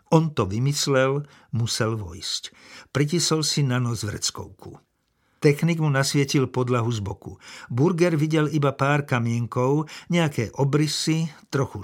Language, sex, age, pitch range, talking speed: Slovak, male, 50-69, 115-150 Hz, 120 wpm